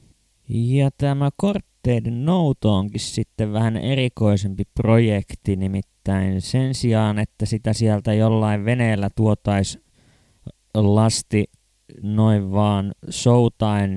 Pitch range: 100-120 Hz